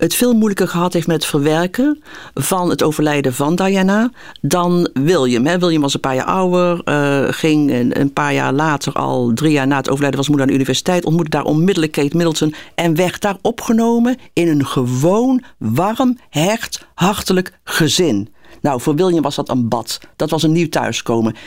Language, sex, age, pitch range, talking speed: Dutch, female, 50-69, 135-180 Hz, 185 wpm